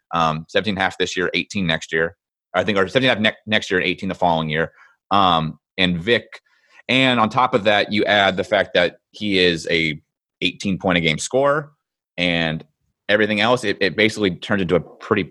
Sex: male